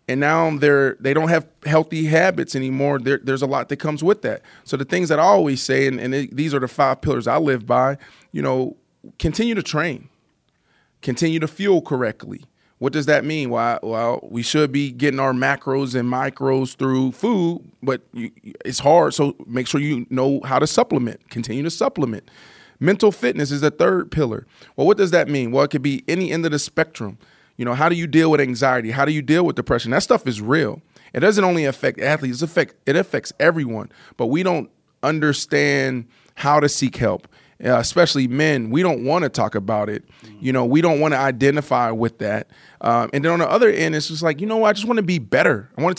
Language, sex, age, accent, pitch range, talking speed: English, male, 30-49, American, 130-160 Hz, 225 wpm